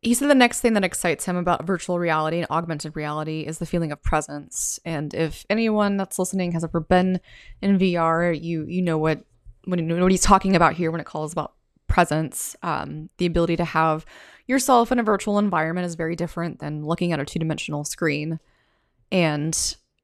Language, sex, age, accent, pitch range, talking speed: English, female, 20-39, American, 160-185 Hz, 200 wpm